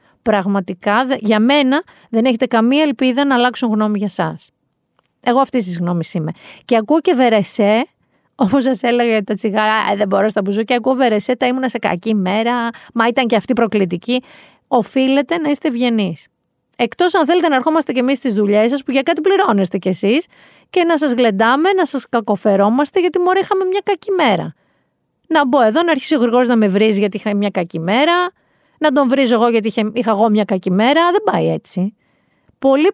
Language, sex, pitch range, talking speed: Greek, female, 210-305 Hz, 190 wpm